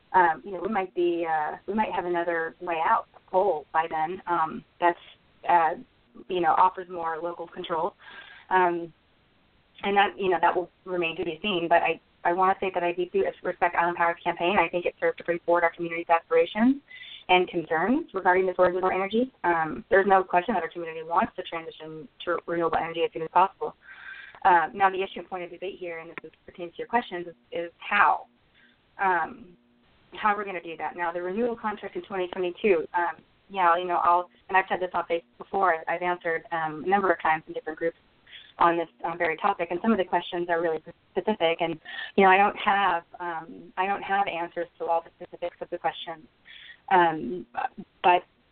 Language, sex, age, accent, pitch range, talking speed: English, female, 20-39, American, 165-190 Hz, 210 wpm